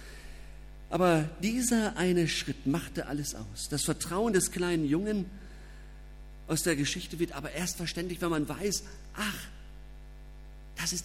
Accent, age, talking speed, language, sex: German, 50-69, 135 wpm, German, male